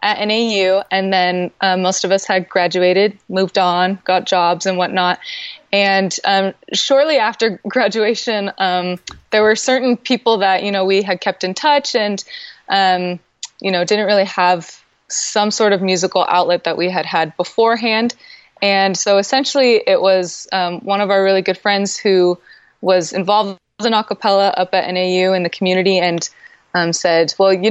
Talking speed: 170 wpm